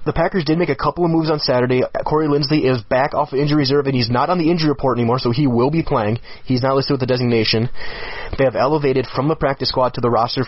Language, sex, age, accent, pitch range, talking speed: English, male, 30-49, American, 115-135 Hz, 265 wpm